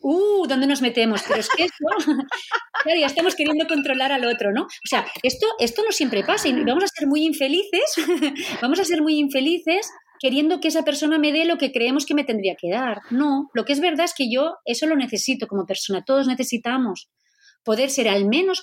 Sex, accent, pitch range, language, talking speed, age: female, Spanish, 220-305 Hz, Spanish, 215 wpm, 30-49